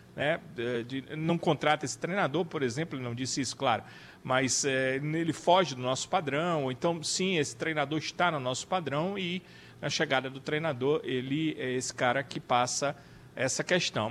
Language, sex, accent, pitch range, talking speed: Portuguese, male, Brazilian, 135-170 Hz, 180 wpm